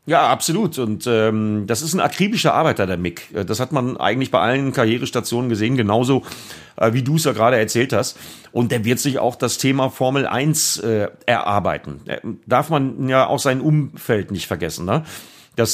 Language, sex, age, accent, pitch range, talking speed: German, male, 40-59, German, 115-140 Hz, 185 wpm